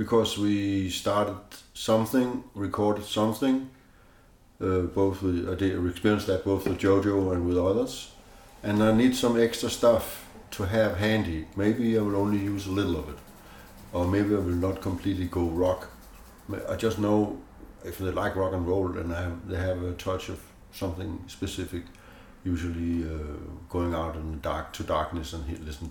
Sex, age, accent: male, 60-79, Danish